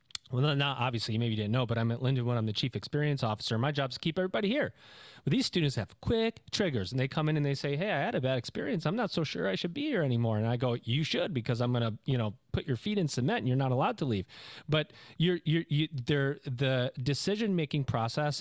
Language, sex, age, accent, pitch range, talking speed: English, male, 30-49, American, 120-155 Hz, 265 wpm